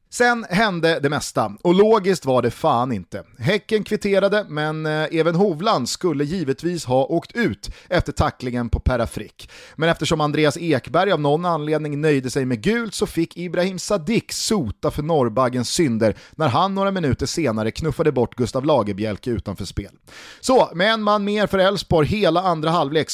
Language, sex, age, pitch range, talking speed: Swedish, male, 30-49, 125-185 Hz, 165 wpm